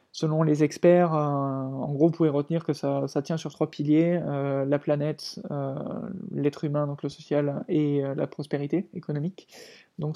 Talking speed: 185 wpm